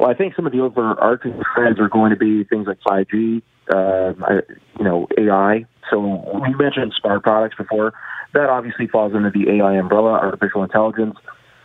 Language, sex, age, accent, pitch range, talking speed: English, male, 30-49, American, 100-115 Hz, 175 wpm